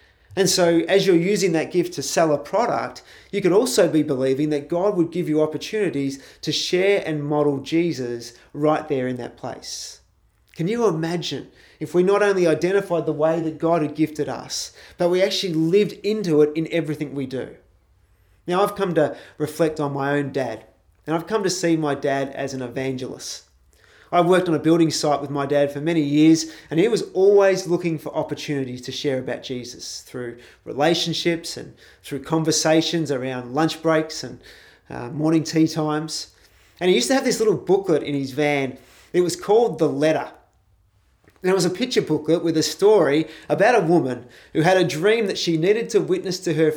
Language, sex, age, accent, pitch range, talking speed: English, male, 30-49, Australian, 140-175 Hz, 195 wpm